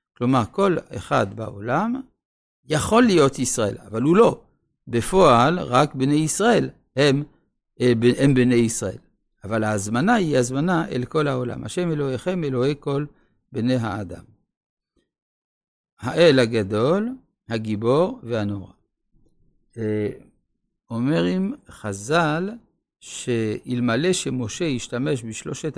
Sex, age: male, 60-79